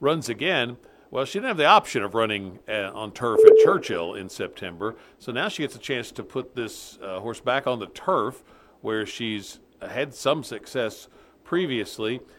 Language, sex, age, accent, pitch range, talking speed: English, male, 50-69, American, 105-135 Hz, 185 wpm